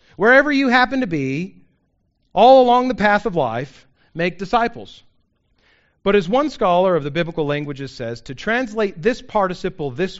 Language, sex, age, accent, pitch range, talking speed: English, male, 40-59, American, 175-250 Hz, 160 wpm